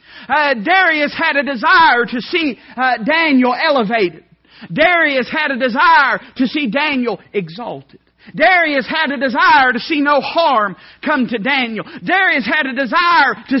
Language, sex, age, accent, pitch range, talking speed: English, male, 40-59, American, 225-290 Hz, 150 wpm